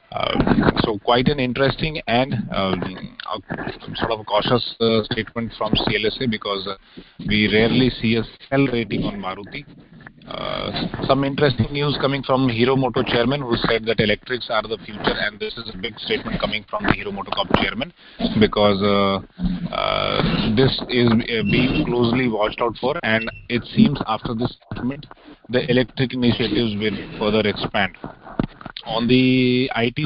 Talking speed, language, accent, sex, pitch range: 155 wpm, English, Indian, male, 110-130 Hz